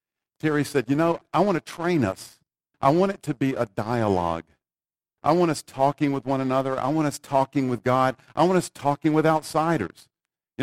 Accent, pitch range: American, 120-165 Hz